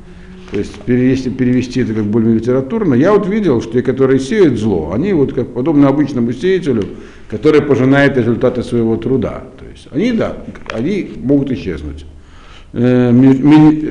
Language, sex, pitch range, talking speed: Russian, male, 95-140 Hz, 140 wpm